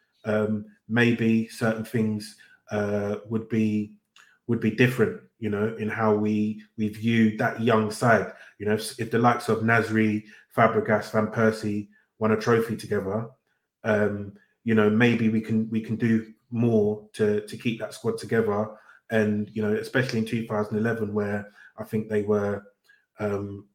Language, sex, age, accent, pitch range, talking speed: English, male, 30-49, British, 105-115 Hz, 165 wpm